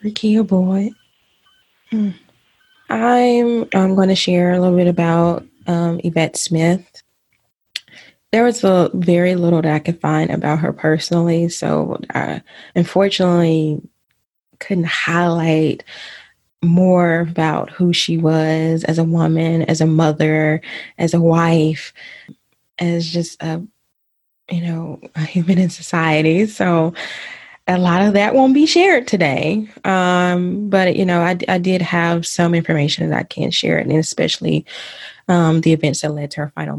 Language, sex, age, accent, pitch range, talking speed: English, female, 20-39, American, 165-190 Hz, 140 wpm